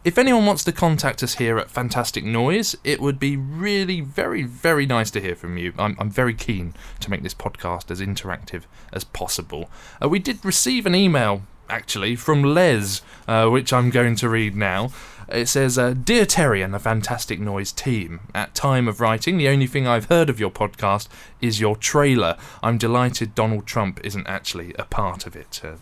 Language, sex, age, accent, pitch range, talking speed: English, male, 20-39, British, 105-140 Hz, 200 wpm